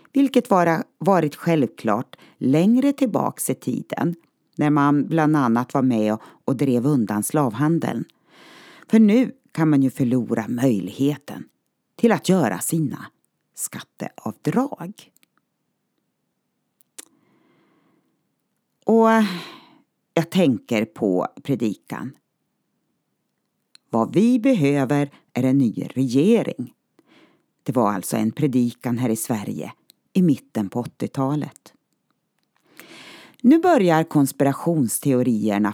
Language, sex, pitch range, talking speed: Swedish, female, 125-200 Hz, 95 wpm